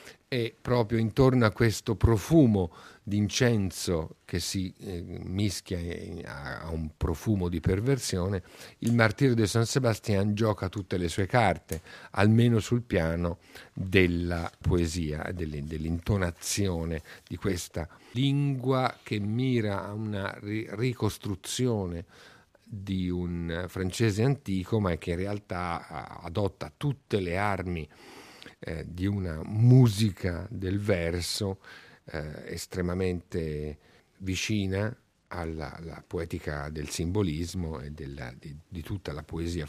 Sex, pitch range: male, 85-115 Hz